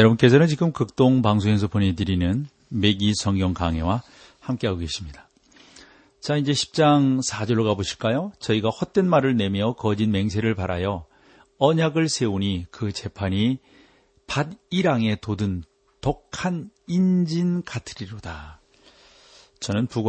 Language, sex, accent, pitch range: Korean, male, native, 100-130 Hz